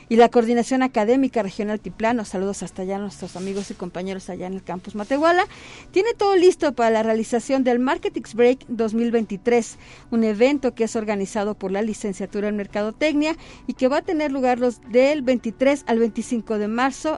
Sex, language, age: female, Spanish, 50-69